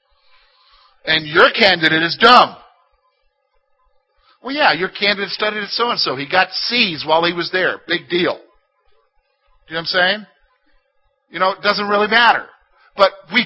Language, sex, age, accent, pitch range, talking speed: English, male, 50-69, American, 180-265 Hz, 160 wpm